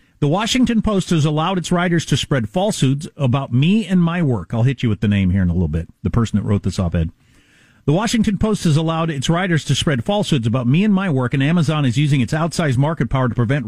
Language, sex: English, male